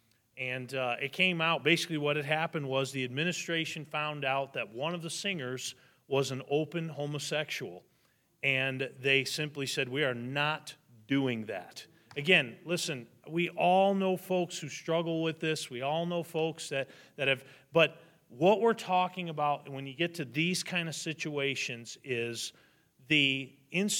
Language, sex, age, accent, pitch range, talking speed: English, male, 40-59, American, 140-175 Hz, 165 wpm